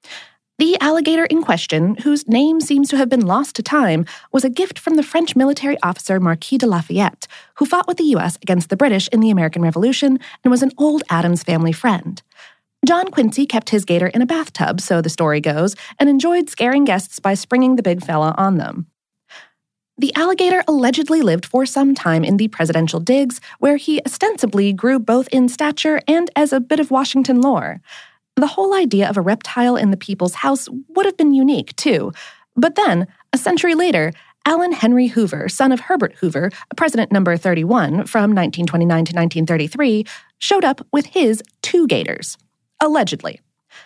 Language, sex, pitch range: English, female, 185-290 Hz